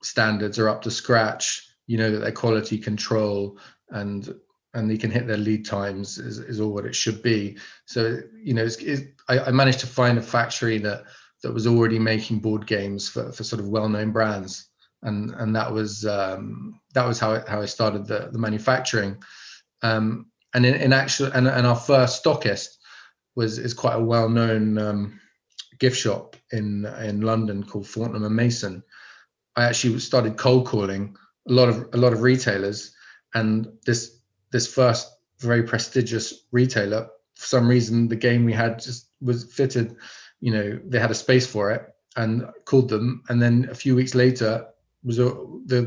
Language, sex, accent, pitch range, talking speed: English, male, British, 110-120 Hz, 180 wpm